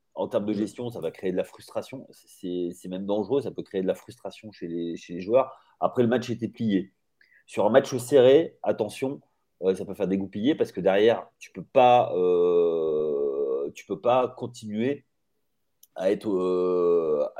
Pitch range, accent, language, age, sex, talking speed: 95-140 Hz, French, French, 30-49, male, 180 wpm